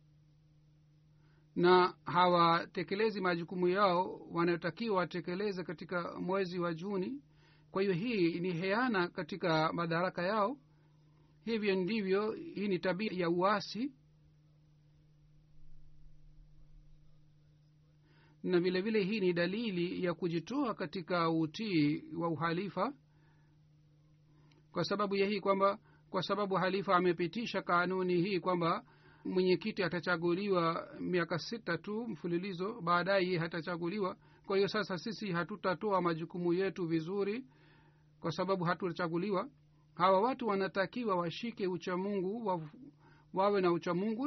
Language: Swahili